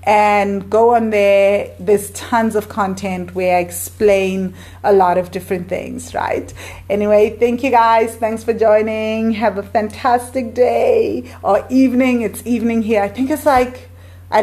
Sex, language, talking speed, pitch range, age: female, English, 160 wpm, 185-230 Hz, 30-49